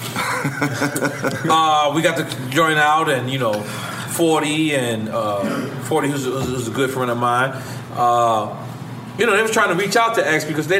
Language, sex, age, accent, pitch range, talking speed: English, male, 40-59, American, 120-155 Hz, 190 wpm